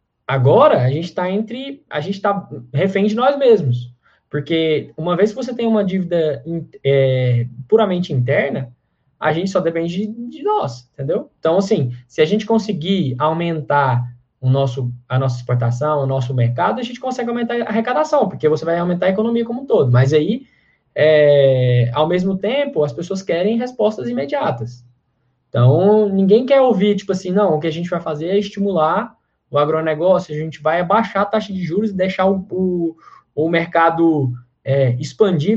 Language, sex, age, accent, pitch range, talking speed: Portuguese, male, 10-29, Brazilian, 145-205 Hz, 170 wpm